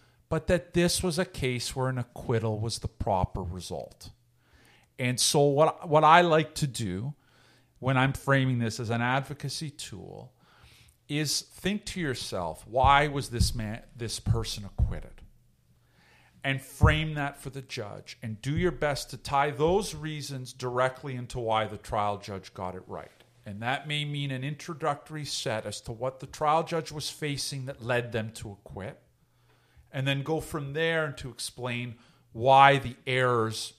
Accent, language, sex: American, English, male